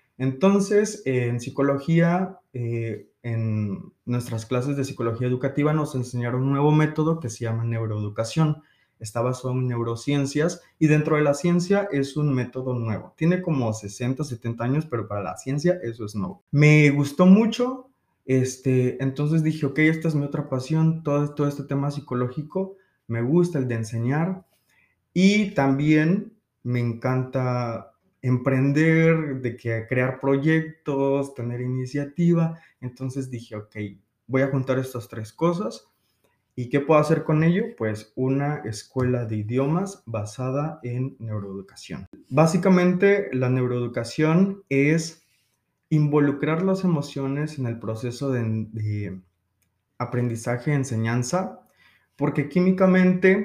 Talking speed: 130 wpm